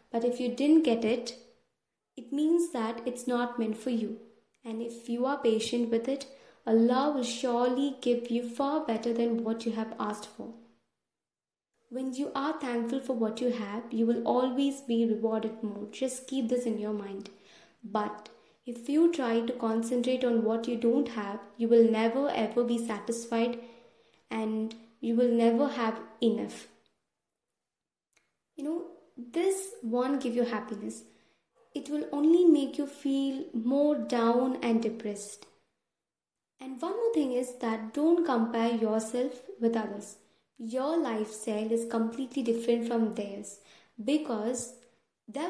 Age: 20-39